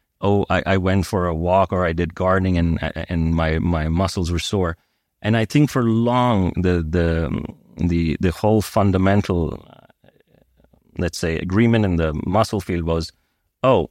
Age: 30-49